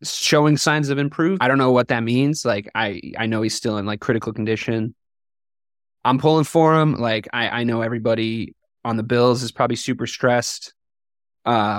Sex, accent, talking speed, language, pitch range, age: male, American, 190 wpm, English, 115-135 Hz, 20-39